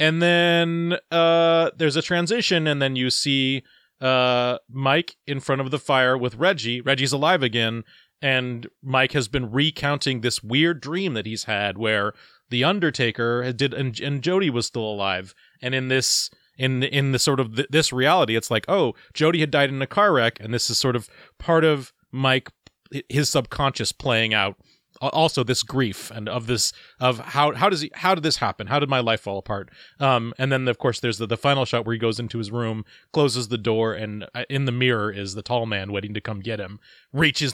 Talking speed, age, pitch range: 210 wpm, 30-49, 115-155 Hz